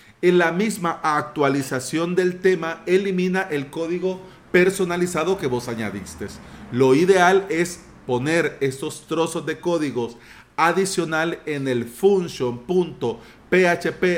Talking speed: 105 wpm